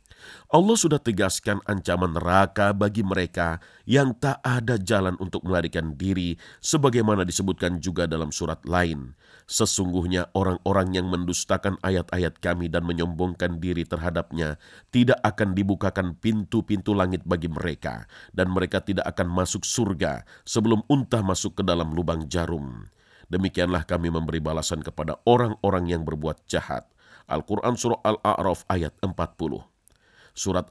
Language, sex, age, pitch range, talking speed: Indonesian, male, 40-59, 85-105 Hz, 125 wpm